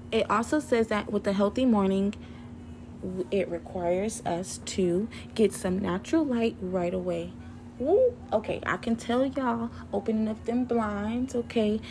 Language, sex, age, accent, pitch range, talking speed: English, female, 30-49, American, 185-225 Hz, 140 wpm